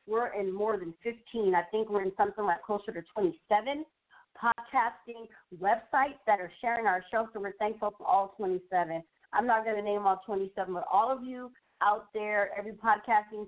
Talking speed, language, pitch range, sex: 185 wpm, English, 185-220 Hz, female